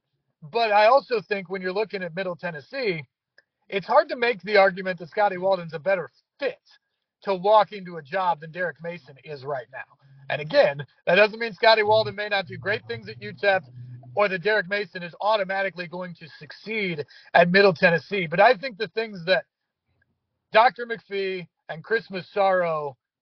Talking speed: 180 wpm